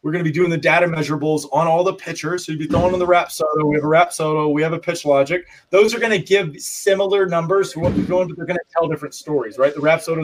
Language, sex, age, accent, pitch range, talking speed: English, male, 20-39, American, 150-180 Hz, 305 wpm